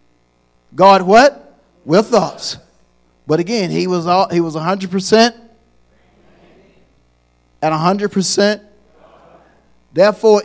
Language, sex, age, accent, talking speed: English, male, 50-69, American, 85 wpm